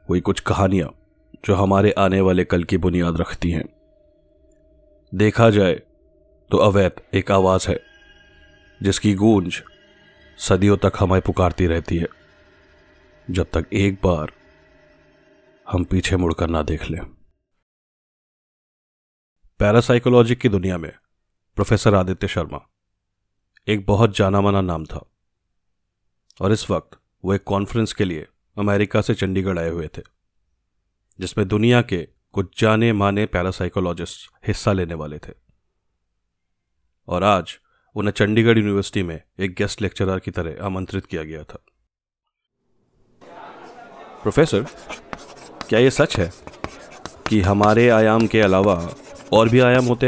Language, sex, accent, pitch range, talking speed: Hindi, male, native, 90-105 Hz, 125 wpm